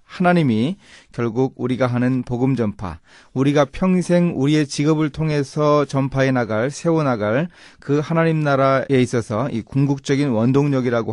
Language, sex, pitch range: Korean, male, 105-145 Hz